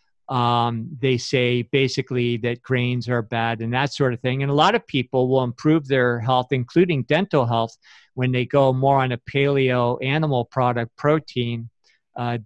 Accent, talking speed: American, 175 wpm